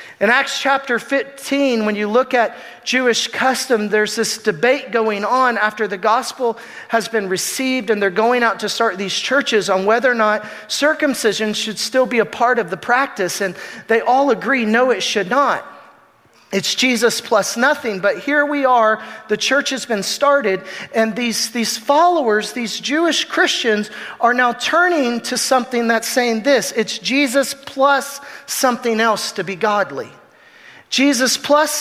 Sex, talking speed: male, 165 wpm